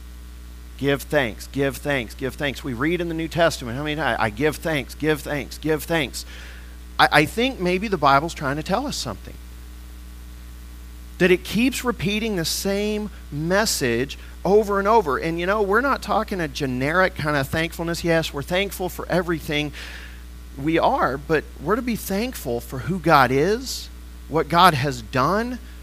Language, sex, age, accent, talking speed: English, male, 40-59, American, 170 wpm